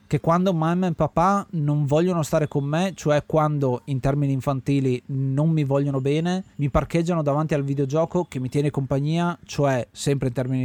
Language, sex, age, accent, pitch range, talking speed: Italian, male, 30-49, native, 130-165 Hz, 180 wpm